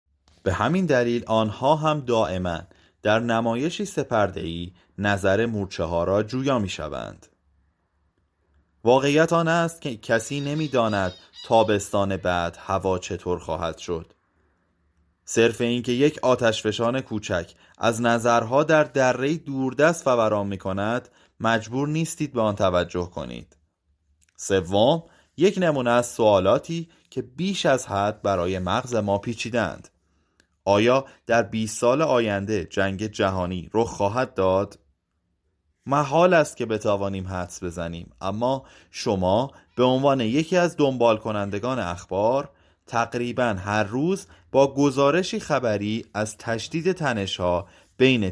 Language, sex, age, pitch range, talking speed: Persian, male, 30-49, 90-130 Hz, 115 wpm